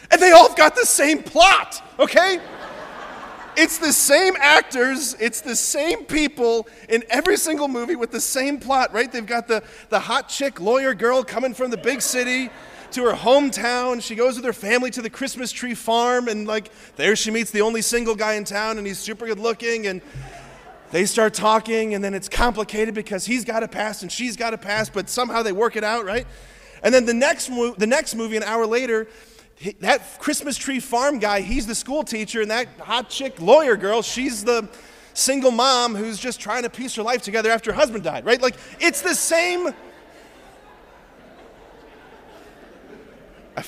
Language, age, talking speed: English, 30-49, 190 wpm